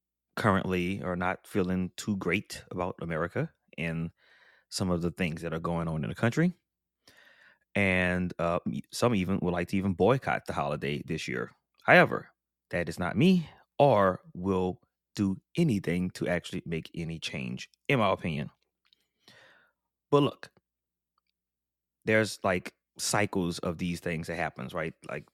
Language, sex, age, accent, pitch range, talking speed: English, male, 20-39, American, 80-100 Hz, 145 wpm